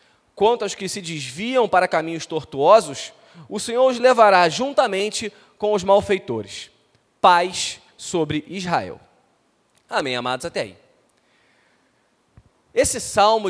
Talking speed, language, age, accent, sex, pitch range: 110 wpm, Portuguese, 20-39, Brazilian, male, 160-245 Hz